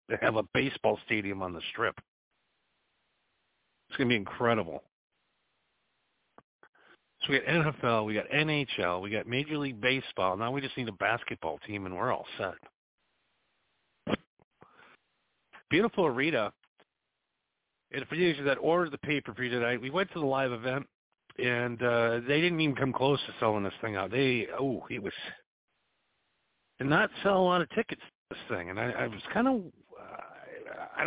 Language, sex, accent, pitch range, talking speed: English, male, American, 115-155 Hz, 170 wpm